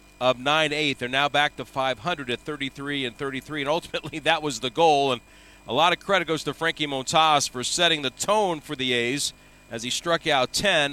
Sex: male